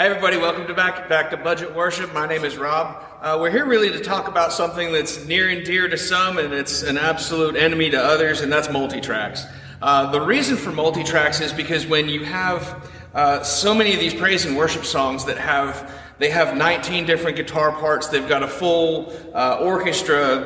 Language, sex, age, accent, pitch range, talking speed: English, male, 30-49, American, 135-165 Hz, 205 wpm